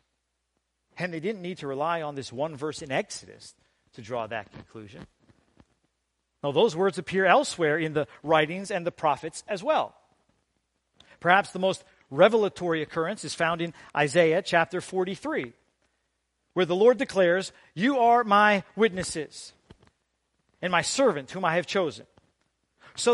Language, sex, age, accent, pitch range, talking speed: English, male, 50-69, American, 140-210 Hz, 145 wpm